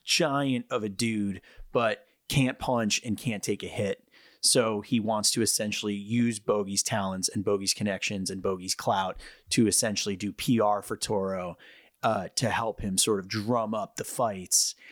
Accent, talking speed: American, 170 wpm